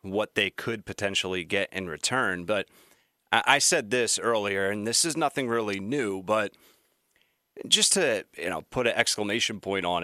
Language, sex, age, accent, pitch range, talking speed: English, male, 30-49, American, 105-135 Hz, 165 wpm